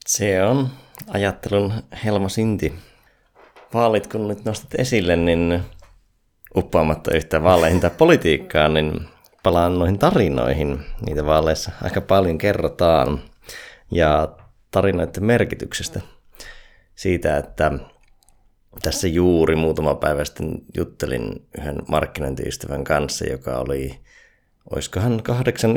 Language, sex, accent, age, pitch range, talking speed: Finnish, male, native, 30-49, 75-95 Hz, 100 wpm